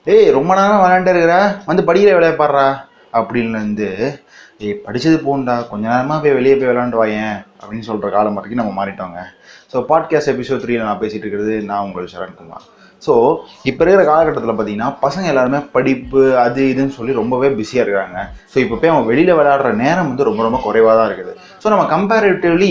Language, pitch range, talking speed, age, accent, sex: Tamil, 120-170 Hz, 175 wpm, 30-49, native, male